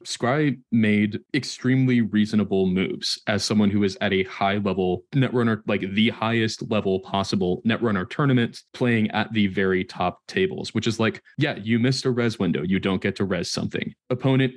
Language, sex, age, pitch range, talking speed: English, male, 20-39, 100-130 Hz, 175 wpm